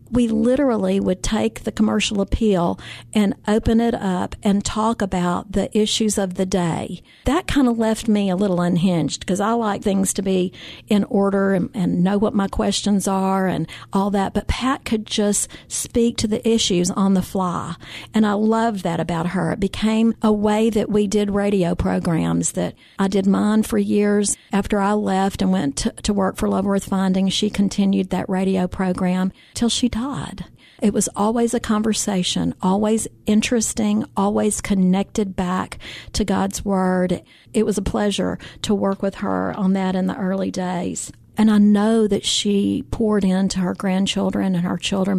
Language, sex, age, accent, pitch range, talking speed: English, female, 50-69, American, 185-215 Hz, 180 wpm